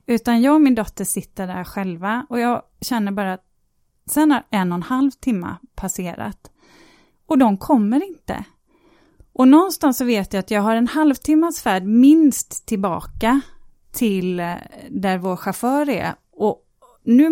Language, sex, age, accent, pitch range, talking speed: Swedish, female, 30-49, native, 195-280 Hz, 155 wpm